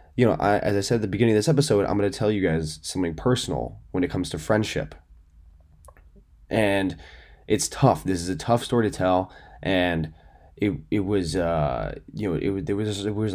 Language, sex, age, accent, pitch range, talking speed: English, male, 20-39, American, 80-105 Hz, 215 wpm